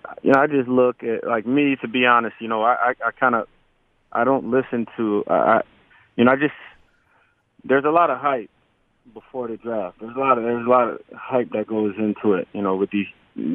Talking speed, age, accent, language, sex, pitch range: 230 wpm, 20-39, American, English, male, 100-115 Hz